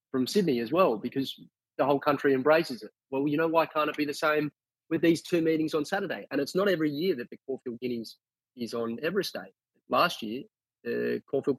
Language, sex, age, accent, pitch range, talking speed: English, male, 20-39, Australian, 115-135 Hz, 210 wpm